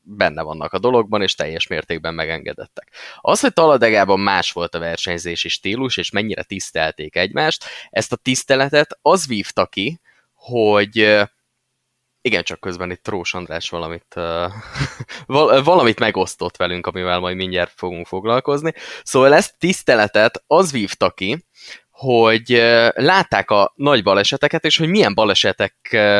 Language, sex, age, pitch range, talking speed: Hungarian, male, 20-39, 90-125 Hz, 135 wpm